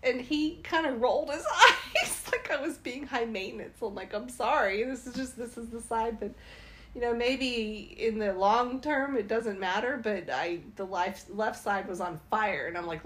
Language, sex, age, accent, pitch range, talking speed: English, female, 30-49, American, 195-275 Hz, 215 wpm